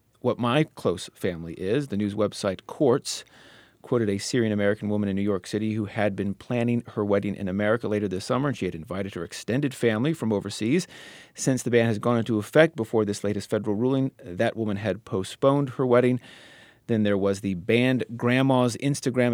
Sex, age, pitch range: male, 30-49, 105-135 Hz